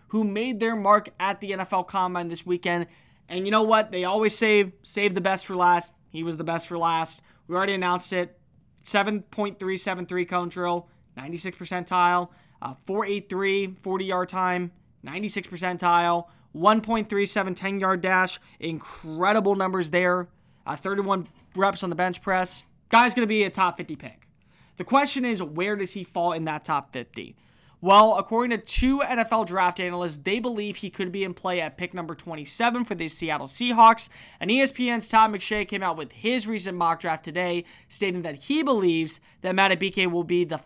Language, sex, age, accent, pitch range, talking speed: English, male, 20-39, American, 170-210 Hz, 175 wpm